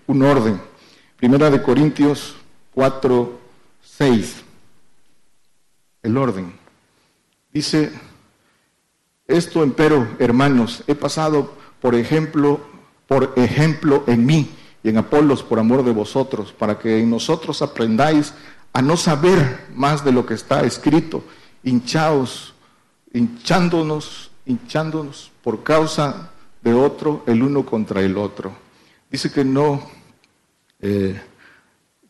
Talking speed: 110 wpm